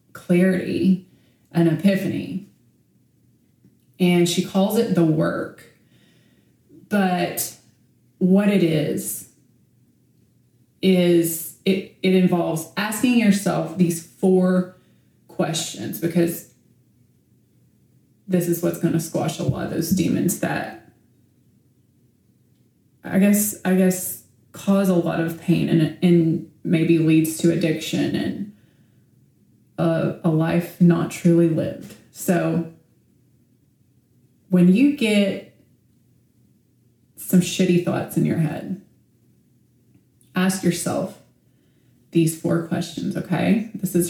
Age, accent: 20-39, American